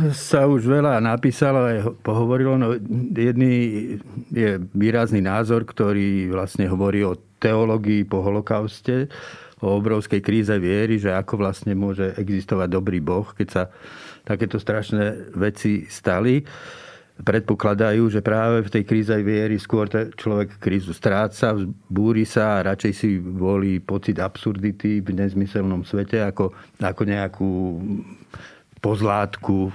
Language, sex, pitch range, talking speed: Slovak, male, 100-115 Hz, 125 wpm